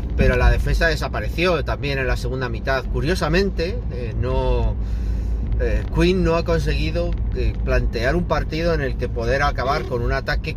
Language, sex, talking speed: Spanish, male, 160 wpm